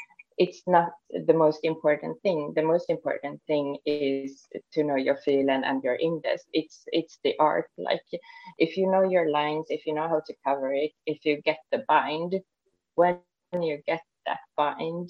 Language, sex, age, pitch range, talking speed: English, female, 20-39, 140-170 Hz, 180 wpm